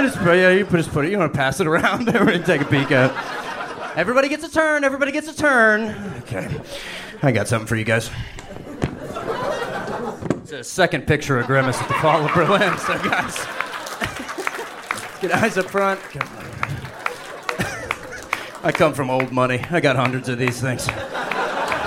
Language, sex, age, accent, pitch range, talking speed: English, male, 30-49, American, 135-195 Hz, 165 wpm